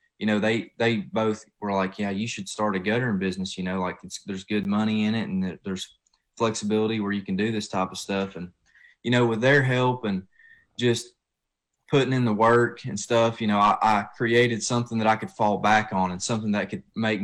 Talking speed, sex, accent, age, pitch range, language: 225 wpm, male, American, 20-39, 100-115 Hz, English